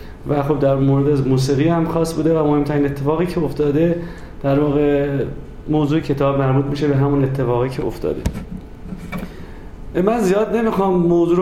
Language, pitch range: Persian, 140-175 Hz